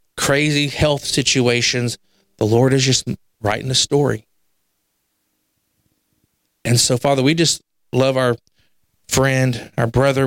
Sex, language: male, English